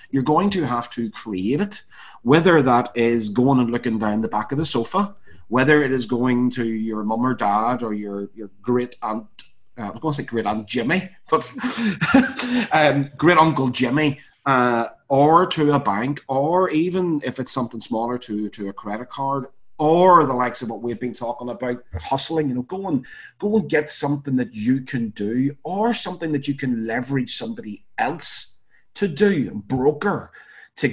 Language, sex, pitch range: English, male, 115-155 Hz